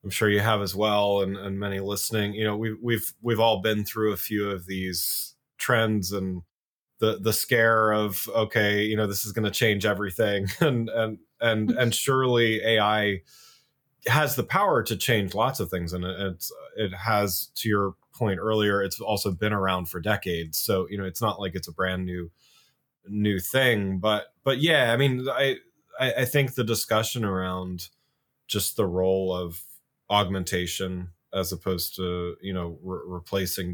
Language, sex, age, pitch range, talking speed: English, male, 20-39, 95-115 Hz, 180 wpm